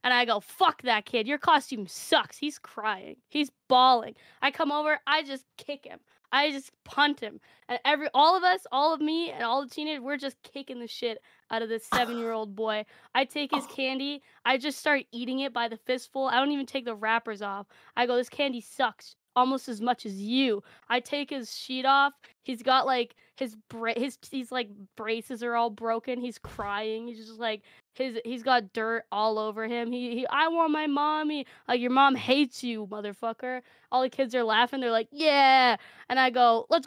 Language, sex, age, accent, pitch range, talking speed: English, female, 20-39, American, 225-275 Hz, 210 wpm